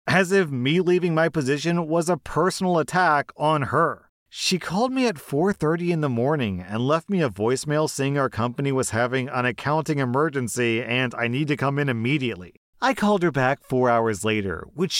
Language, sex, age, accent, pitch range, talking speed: English, male, 30-49, American, 120-165 Hz, 190 wpm